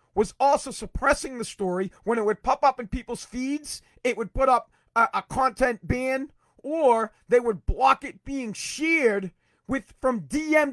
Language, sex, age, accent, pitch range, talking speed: English, male, 40-59, American, 195-260 Hz, 175 wpm